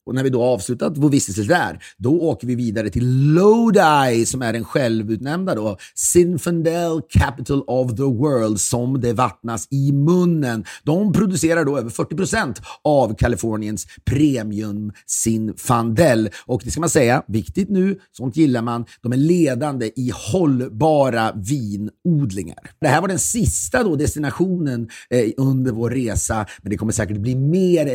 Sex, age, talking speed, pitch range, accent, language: male, 30-49, 150 wpm, 115-150 Hz, native, Swedish